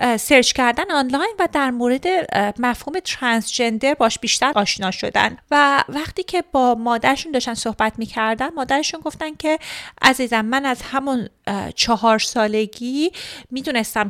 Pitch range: 215-285 Hz